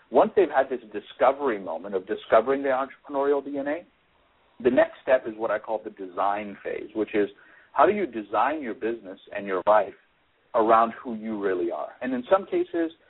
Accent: American